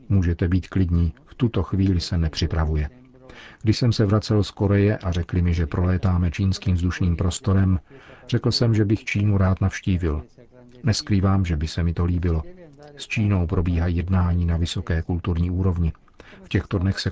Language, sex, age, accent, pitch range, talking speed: Czech, male, 50-69, native, 90-110 Hz, 170 wpm